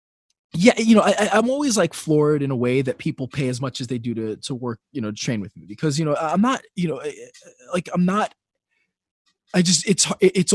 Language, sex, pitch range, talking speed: English, male, 130-180 Hz, 240 wpm